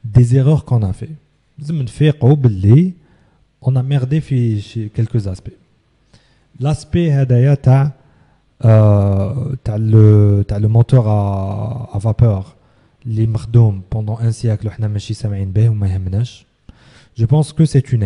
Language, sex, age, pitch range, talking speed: English, male, 30-49, 110-145 Hz, 95 wpm